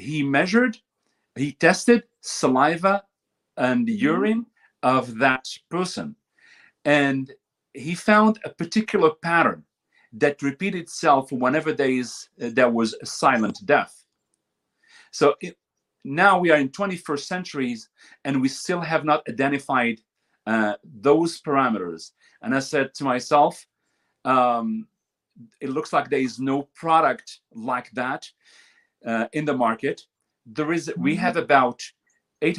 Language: English